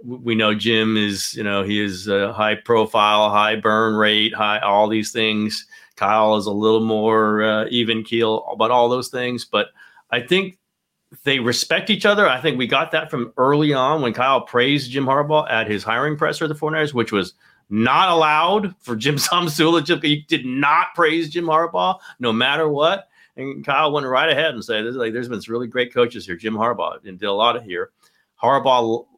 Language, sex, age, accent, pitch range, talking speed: English, male, 40-59, American, 110-155 Hz, 200 wpm